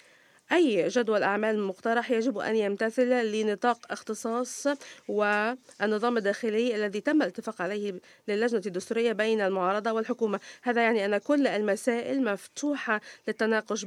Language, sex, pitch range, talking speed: Arabic, female, 210-250 Hz, 115 wpm